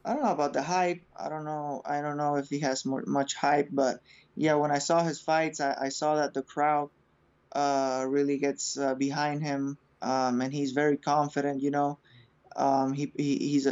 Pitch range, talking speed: 135-150 Hz, 210 wpm